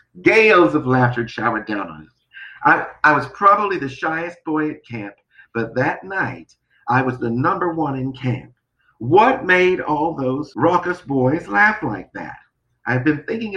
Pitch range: 125-155 Hz